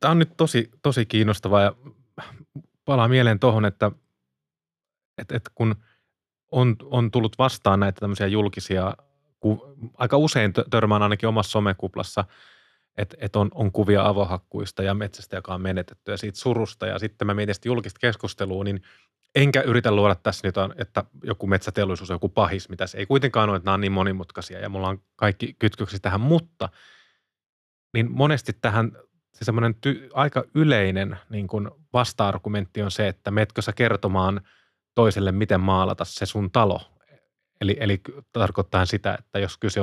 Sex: male